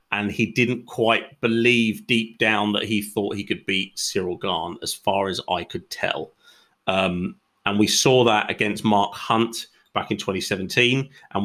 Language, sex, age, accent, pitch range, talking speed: English, male, 30-49, British, 105-115 Hz, 175 wpm